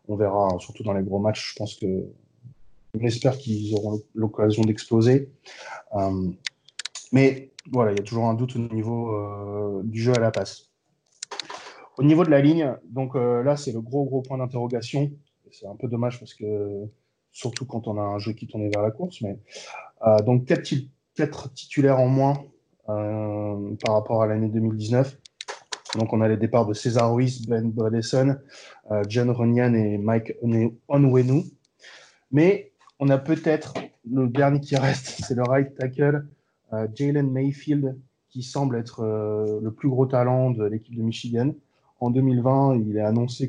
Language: French